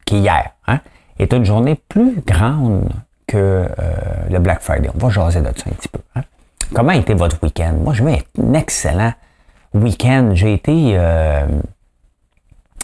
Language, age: English, 50-69